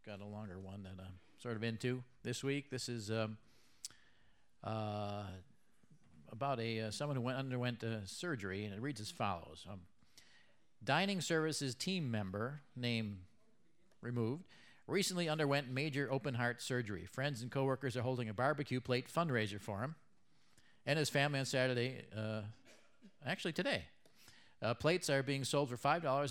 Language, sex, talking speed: English, male, 155 wpm